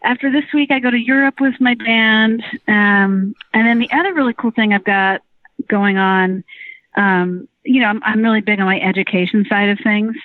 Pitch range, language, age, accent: 180-225 Hz, English, 40-59, American